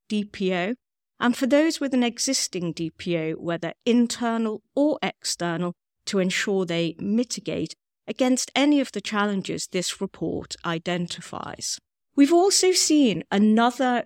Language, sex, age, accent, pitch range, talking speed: English, female, 40-59, British, 175-225 Hz, 120 wpm